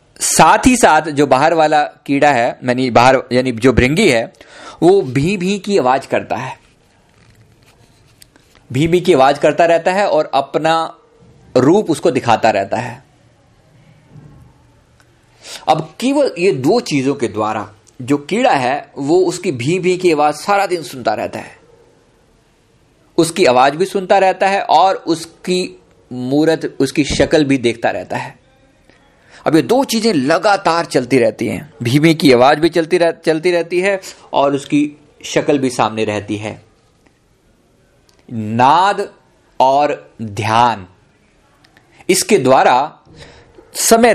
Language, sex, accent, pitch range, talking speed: Hindi, male, native, 130-180 Hz, 135 wpm